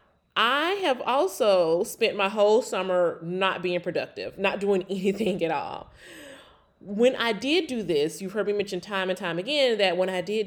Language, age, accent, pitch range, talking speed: English, 30-49, American, 170-235 Hz, 190 wpm